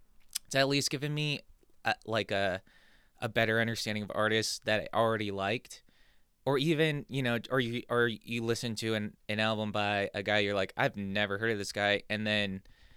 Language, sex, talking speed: English, male, 200 wpm